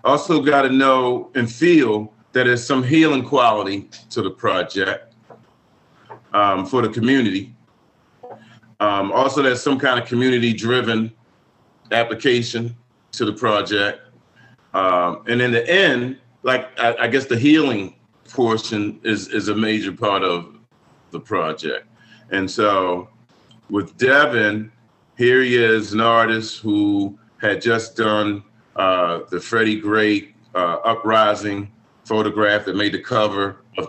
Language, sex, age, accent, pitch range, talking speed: English, male, 40-59, American, 105-125 Hz, 130 wpm